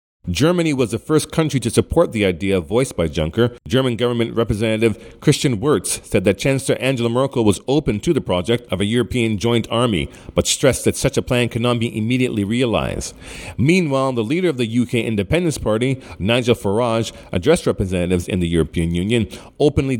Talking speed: 180 wpm